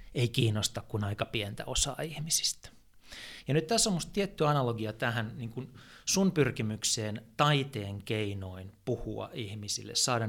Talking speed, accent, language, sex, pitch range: 135 wpm, native, Finnish, male, 110-145 Hz